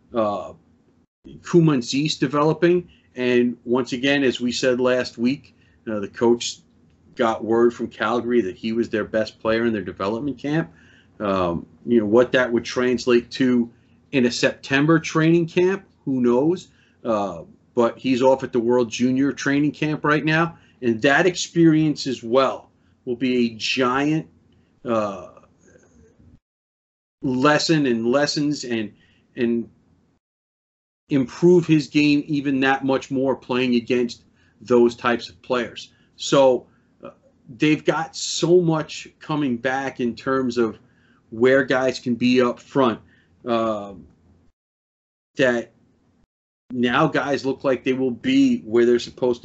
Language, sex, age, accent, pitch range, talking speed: English, male, 40-59, American, 115-140 Hz, 135 wpm